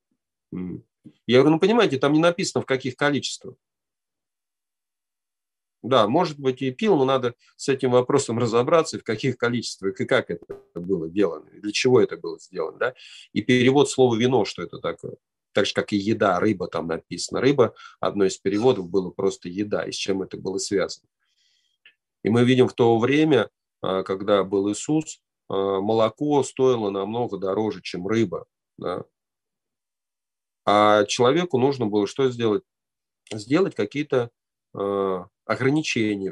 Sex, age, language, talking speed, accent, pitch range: male, 40-59, Russian, 150 wpm, native, 105-140 Hz